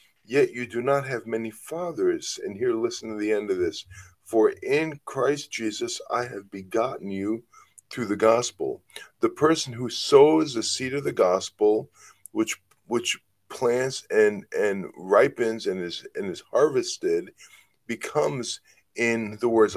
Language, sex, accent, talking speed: English, male, American, 150 wpm